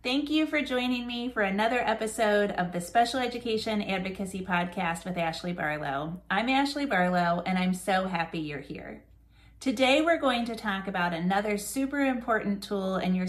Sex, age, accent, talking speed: female, 30-49, American, 170 wpm